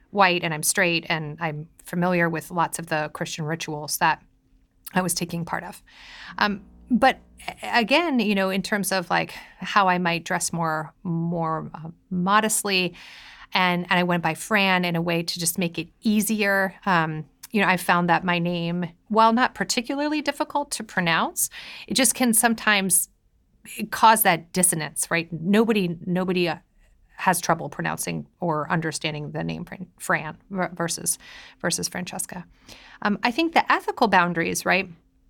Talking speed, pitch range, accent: 160 wpm, 170-210 Hz, American